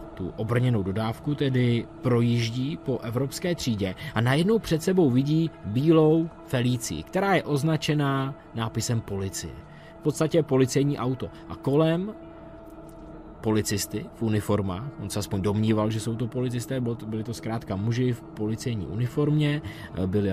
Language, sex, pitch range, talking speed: Czech, male, 105-145 Hz, 140 wpm